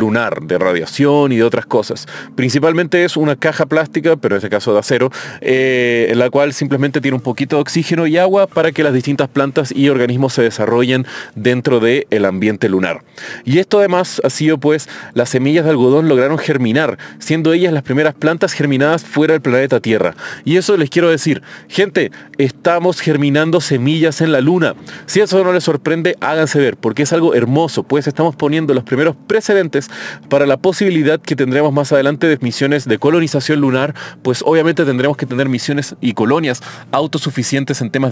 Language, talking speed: Spanish, 185 wpm